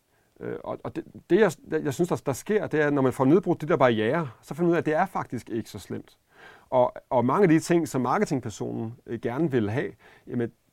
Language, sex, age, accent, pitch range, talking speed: Danish, male, 40-59, native, 120-160 Hz, 230 wpm